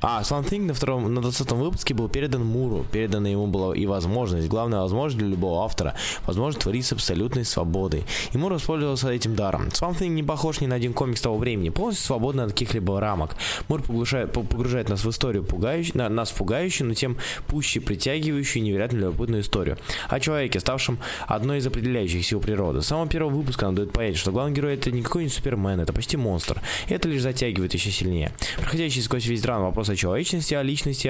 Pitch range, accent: 100-135 Hz, native